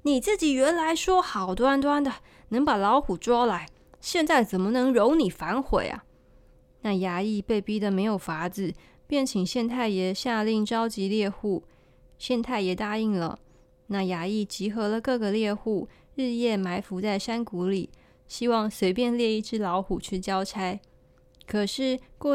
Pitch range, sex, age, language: 190-235 Hz, female, 20-39, Chinese